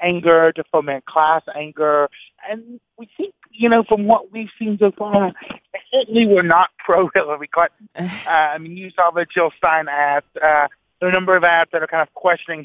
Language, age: English, 50-69